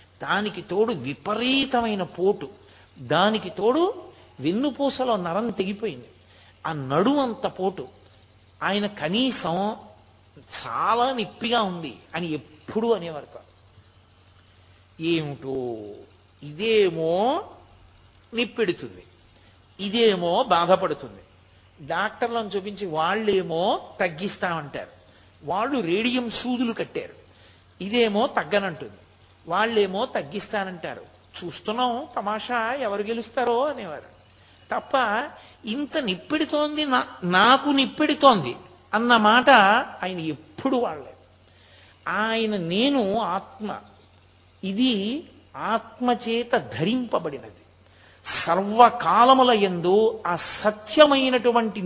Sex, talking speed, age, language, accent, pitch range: male, 75 wpm, 50-69, Telugu, native, 145-235 Hz